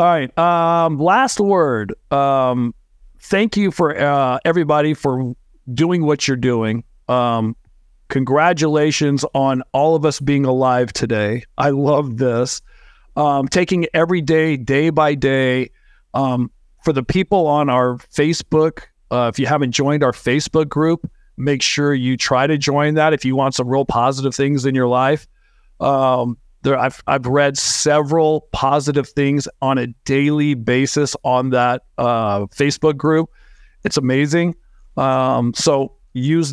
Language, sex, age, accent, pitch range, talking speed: English, male, 40-59, American, 130-155 Hz, 145 wpm